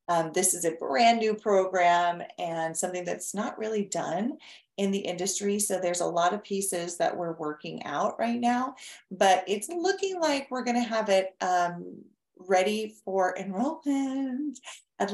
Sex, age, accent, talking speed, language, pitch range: female, 30-49, American, 165 wpm, English, 170-230 Hz